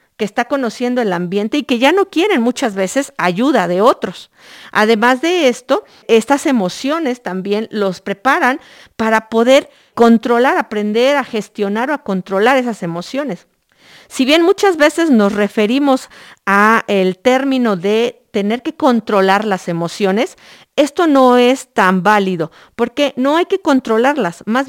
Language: Spanish